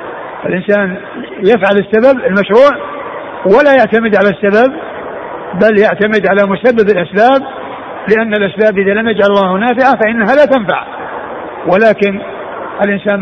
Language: Arabic